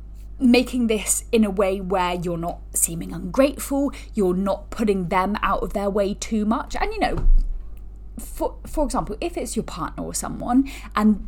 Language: English